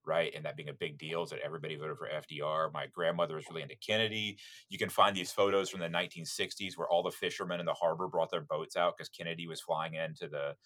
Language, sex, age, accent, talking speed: English, male, 30-49, American, 250 wpm